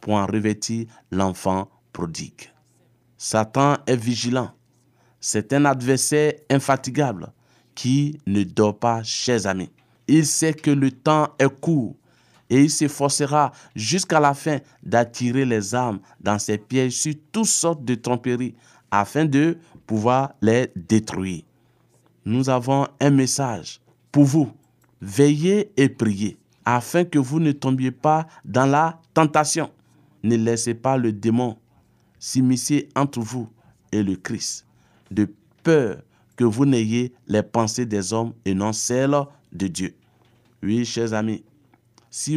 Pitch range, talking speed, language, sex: 115-145 Hz, 135 wpm, French, male